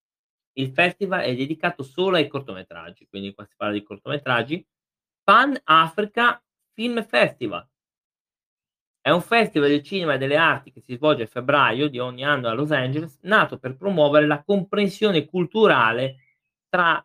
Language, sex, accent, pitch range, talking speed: Italian, male, native, 125-170 Hz, 150 wpm